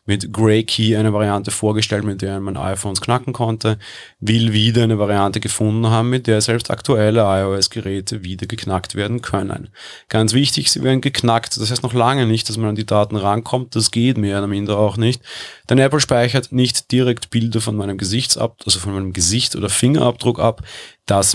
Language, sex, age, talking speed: German, male, 30-49, 190 wpm